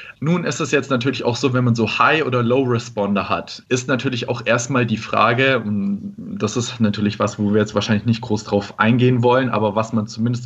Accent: German